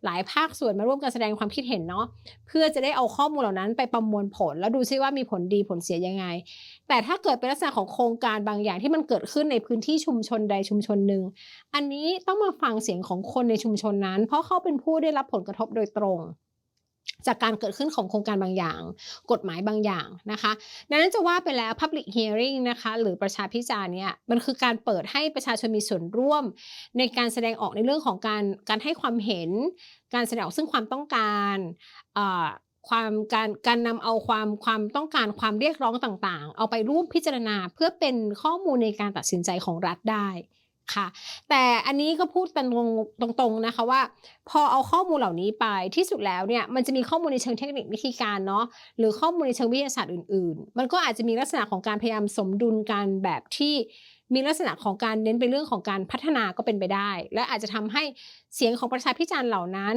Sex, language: female, Thai